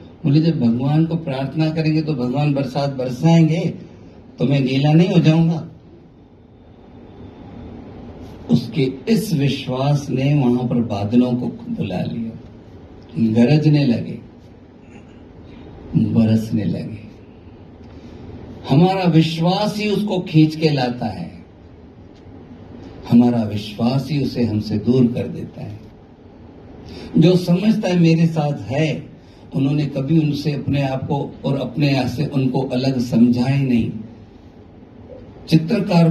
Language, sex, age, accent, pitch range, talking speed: Hindi, male, 50-69, native, 115-155 Hz, 110 wpm